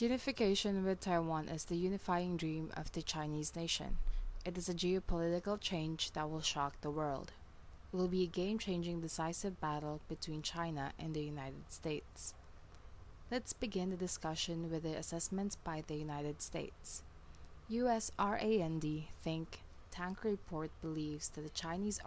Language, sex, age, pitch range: English, female, 20-39, 150-180 Hz